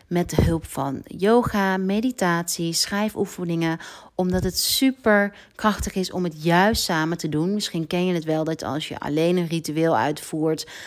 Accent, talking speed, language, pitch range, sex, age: Dutch, 165 wpm, Dutch, 160-195 Hz, female, 40-59